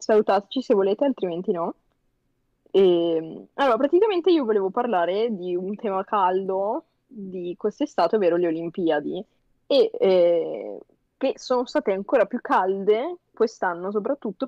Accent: native